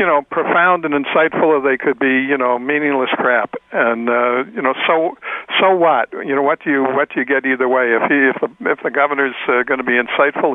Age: 60-79